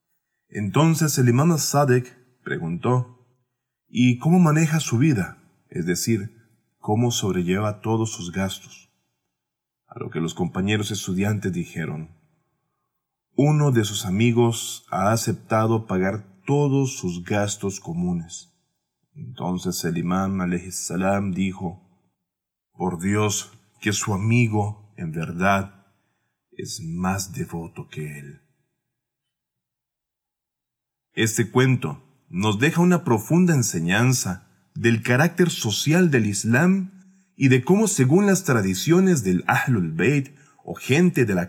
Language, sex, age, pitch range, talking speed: Spanish, male, 40-59, 95-145 Hz, 110 wpm